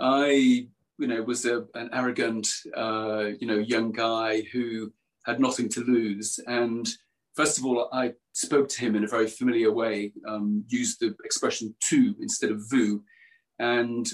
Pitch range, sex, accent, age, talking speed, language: 110-130 Hz, male, British, 40-59, 160 wpm, English